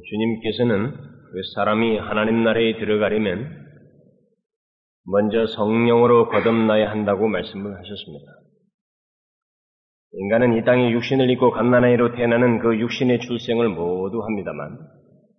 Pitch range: 110-130 Hz